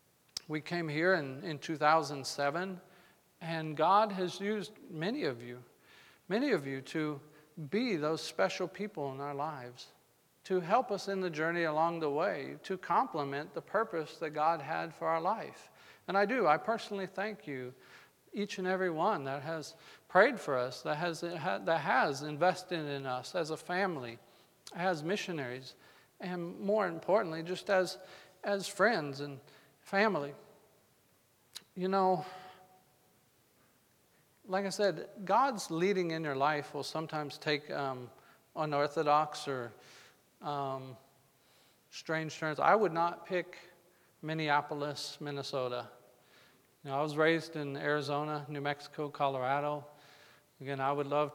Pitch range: 145-180 Hz